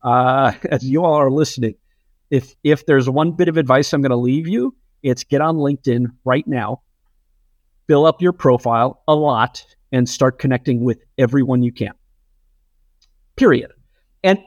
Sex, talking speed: male, 160 wpm